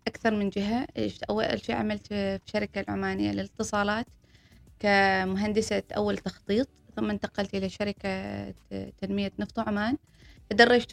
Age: 20-39